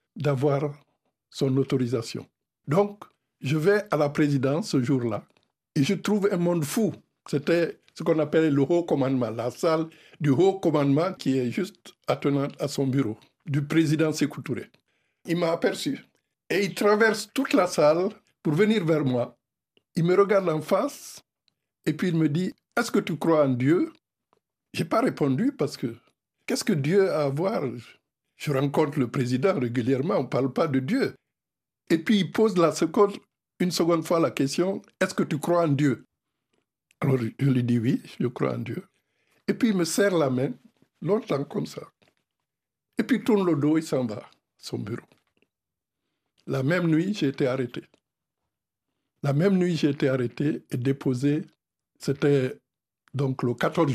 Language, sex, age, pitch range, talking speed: French, male, 60-79, 135-185 Hz, 175 wpm